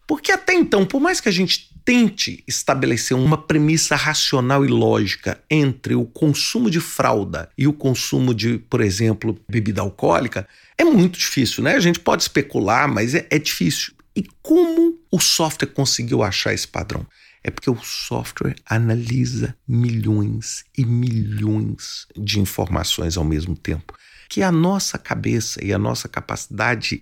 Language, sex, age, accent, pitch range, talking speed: Portuguese, male, 40-59, Brazilian, 110-170 Hz, 155 wpm